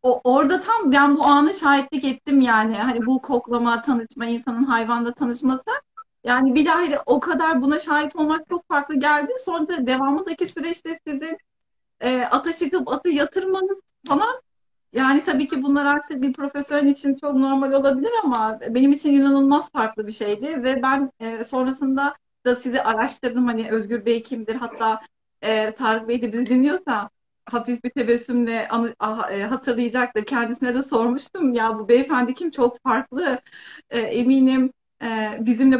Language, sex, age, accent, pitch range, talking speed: Turkish, female, 30-49, native, 235-290 Hz, 150 wpm